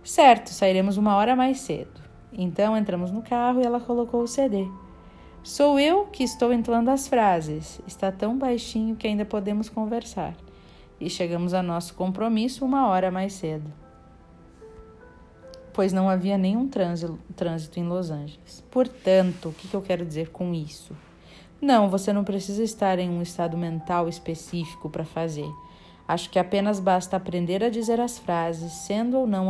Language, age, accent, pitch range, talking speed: Portuguese, 40-59, Brazilian, 170-230 Hz, 160 wpm